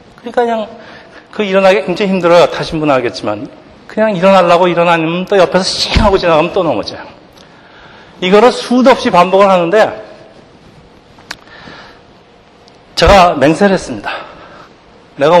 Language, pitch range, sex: Korean, 145-195 Hz, male